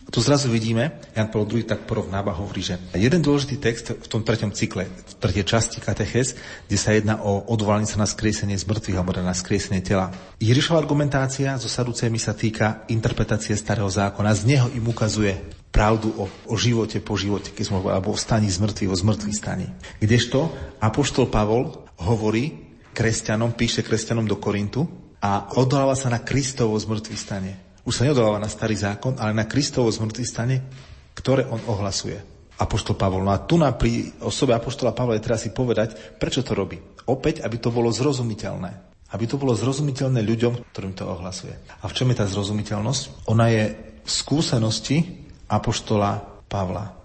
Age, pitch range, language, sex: 40-59, 100-120 Hz, Slovak, male